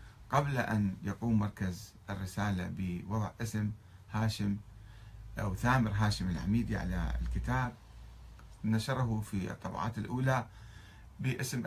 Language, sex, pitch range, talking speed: Arabic, male, 100-130 Hz, 100 wpm